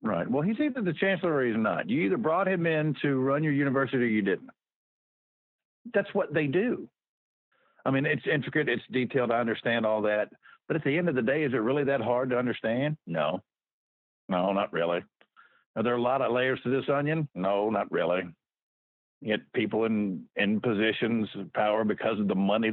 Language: English